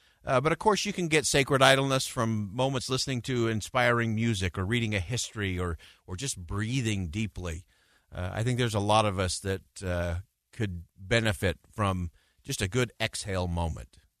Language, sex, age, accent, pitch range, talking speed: English, male, 50-69, American, 95-120 Hz, 175 wpm